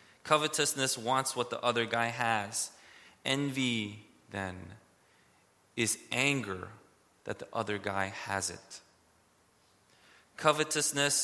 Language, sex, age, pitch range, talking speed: English, male, 20-39, 105-130 Hz, 95 wpm